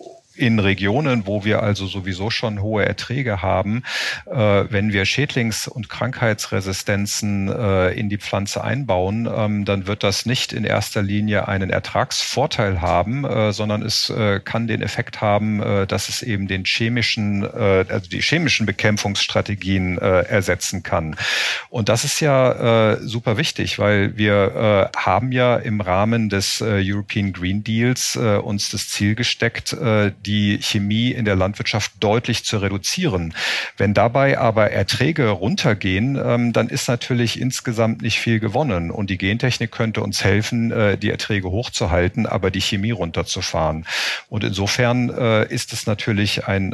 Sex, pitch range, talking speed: male, 100-115 Hz, 135 wpm